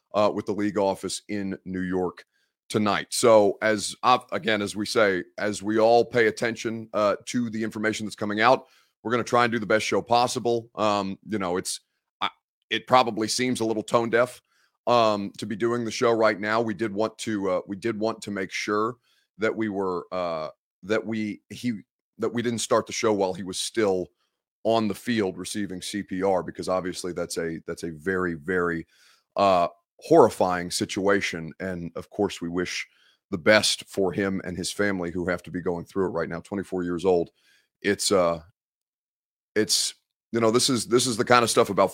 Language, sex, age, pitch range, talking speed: English, male, 30-49, 95-115 Hz, 200 wpm